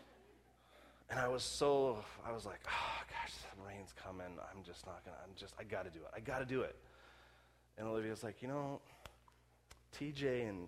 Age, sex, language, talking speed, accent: 30-49, male, English, 200 wpm, American